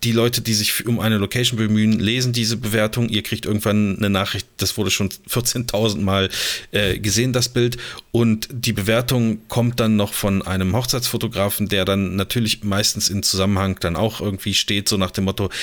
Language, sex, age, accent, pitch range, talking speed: German, male, 30-49, German, 100-115 Hz, 185 wpm